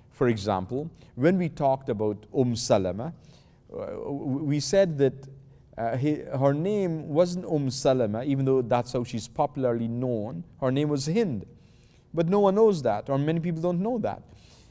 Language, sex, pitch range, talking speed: English, male, 105-140 Hz, 165 wpm